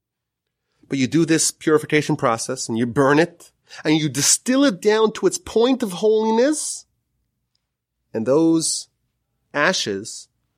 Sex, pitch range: male, 125-200 Hz